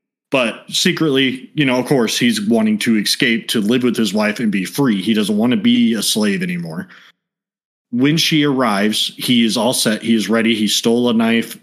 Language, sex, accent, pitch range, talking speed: English, male, American, 115-155 Hz, 205 wpm